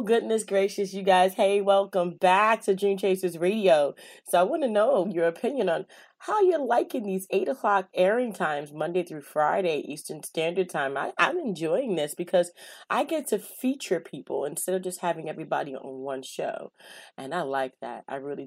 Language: English